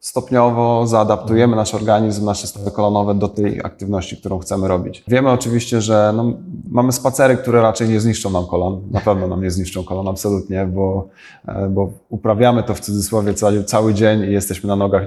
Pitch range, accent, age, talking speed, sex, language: 95-110 Hz, native, 20-39, 180 wpm, male, Polish